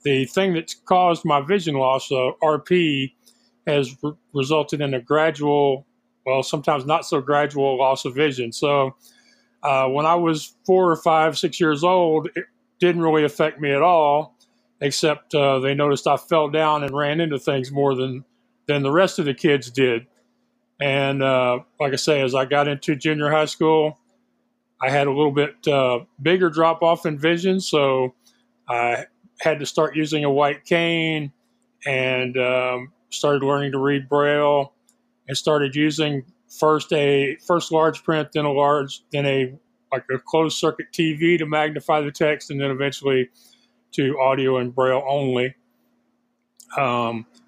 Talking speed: 165 wpm